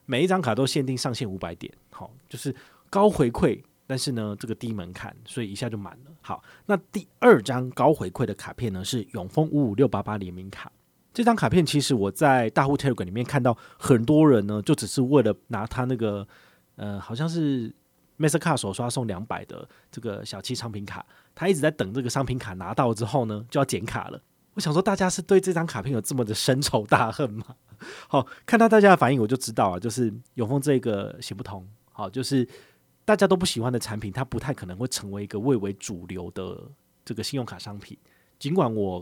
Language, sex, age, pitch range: Chinese, male, 30-49, 105-145 Hz